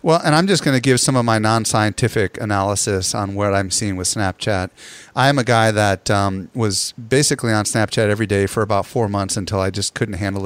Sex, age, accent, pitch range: male, 30-49, American, 100-120 Hz